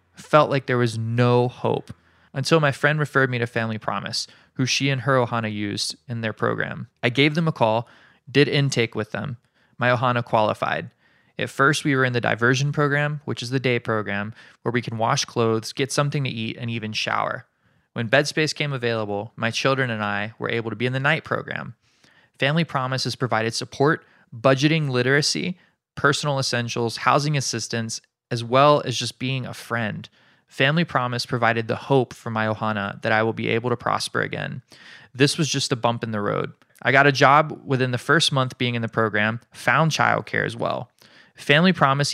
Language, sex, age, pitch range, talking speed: English, male, 20-39, 115-140 Hz, 195 wpm